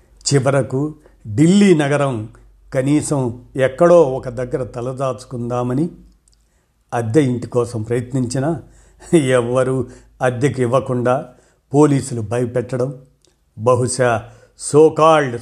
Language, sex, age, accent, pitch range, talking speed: Telugu, male, 50-69, native, 120-145 Hz, 70 wpm